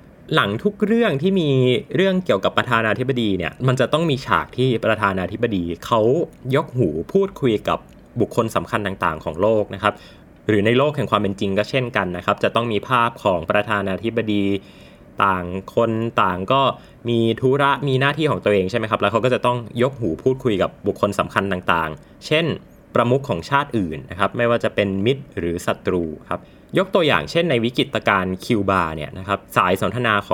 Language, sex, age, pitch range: Thai, male, 20-39, 95-125 Hz